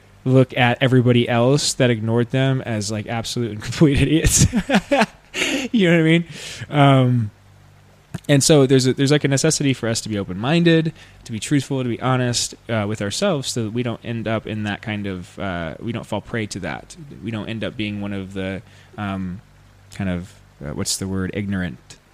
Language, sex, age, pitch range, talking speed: English, male, 20-39, 100-125 Hz, 200 wpm